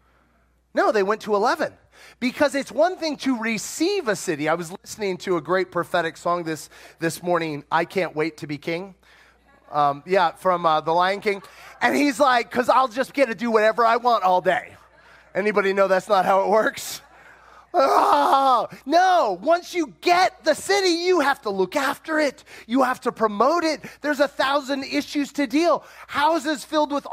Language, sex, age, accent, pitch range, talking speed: English, male, 30-49, American, 195-295 Hz, 185 wpm